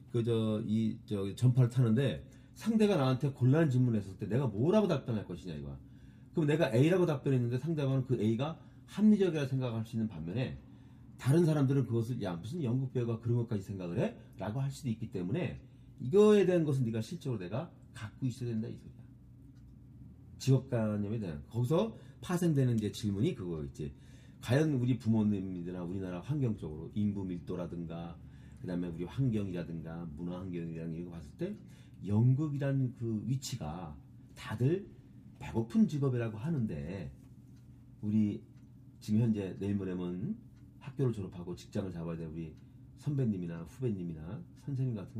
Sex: male